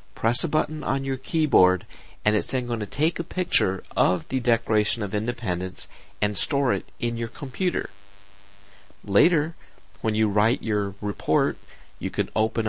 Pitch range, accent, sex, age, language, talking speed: 95-125 Hz, American, male, 50-69, English, 160 wpm